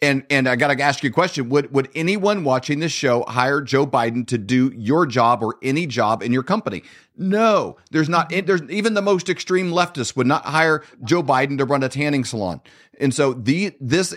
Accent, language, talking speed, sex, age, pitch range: American, English, 215 wpm, male, 40-59, 130-165 Hz